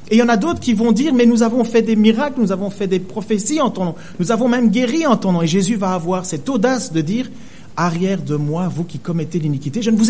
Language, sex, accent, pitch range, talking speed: French, male, French, 145-215 Hz, 305 wpm